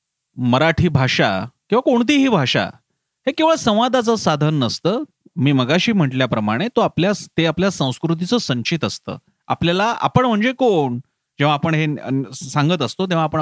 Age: 40-59